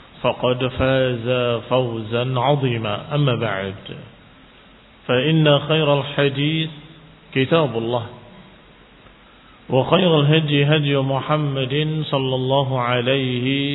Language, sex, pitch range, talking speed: Indonesian, male, 120-150 Hz, 80 wpm